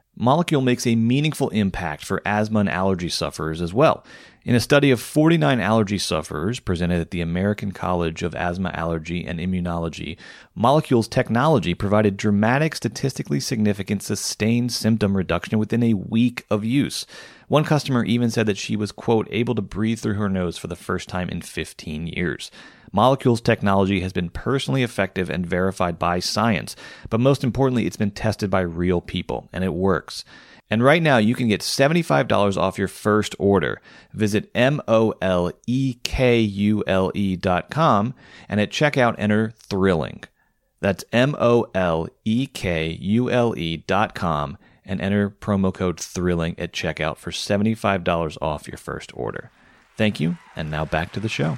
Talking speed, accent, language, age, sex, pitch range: 155 wpm, American, English, 30-49, male, 90-115 Hz